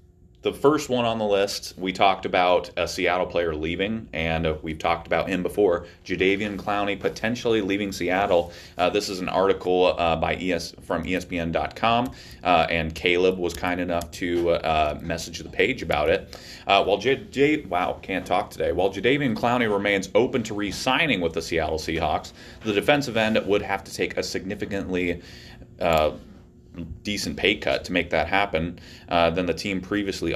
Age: 30-49